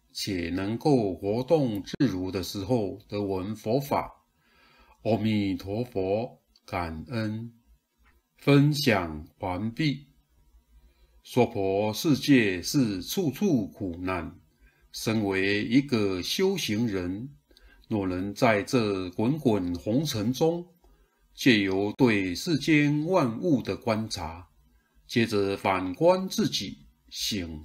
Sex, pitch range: male, 95-135 Hz